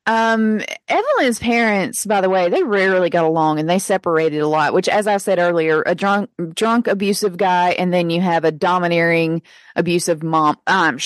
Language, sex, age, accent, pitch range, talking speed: English, female, 30-49, American, 180-245 Hz, 185 wpm